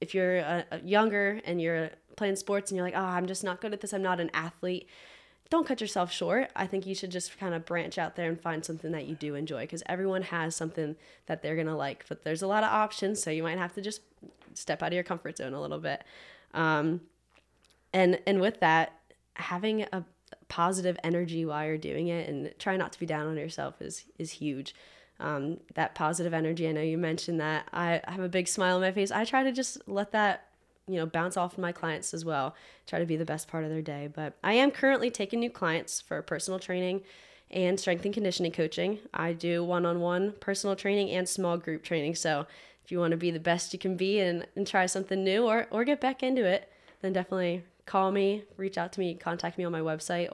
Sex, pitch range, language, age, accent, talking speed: female, 165-195 Hz, English, 10-29, American, 235 wpm